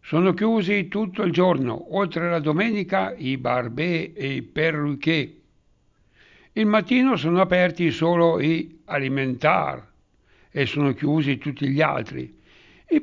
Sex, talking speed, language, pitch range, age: male, 125 wpm, Italian, 135-180 Hz, 60-79